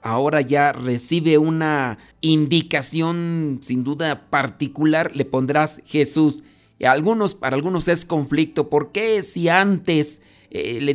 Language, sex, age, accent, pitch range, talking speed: Spanish, male, 40-59, Mexican, 140-165 Hz, 130 wpm